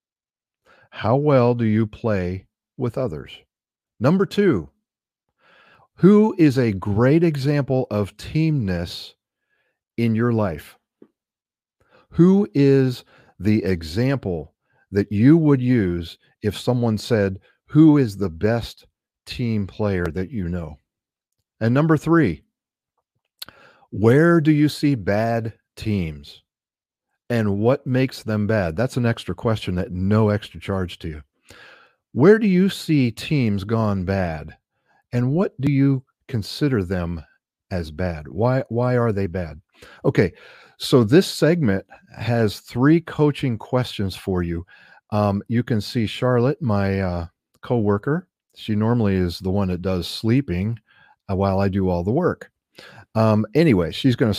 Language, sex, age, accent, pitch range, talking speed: English, male, 40-59, American, 95-130 Hz, 130 wpm